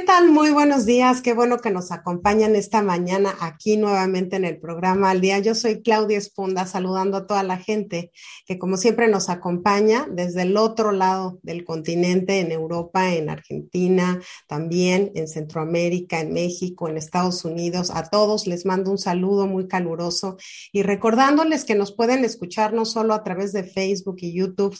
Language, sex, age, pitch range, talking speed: Spanish, female, 40-59, 175-200 Hz, 175 wpm